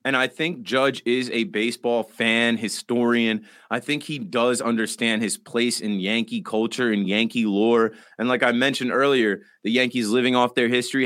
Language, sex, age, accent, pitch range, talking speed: English, male, 30-49, American, 120-145 Hz, 180 wpm